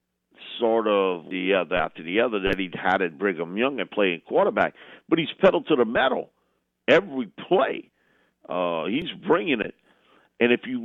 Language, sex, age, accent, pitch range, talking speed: English, male, 50-69, American, 80-125 Hz, 170 wpm